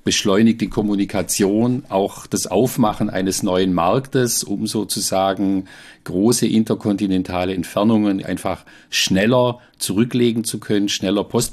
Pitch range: 95-110 Hz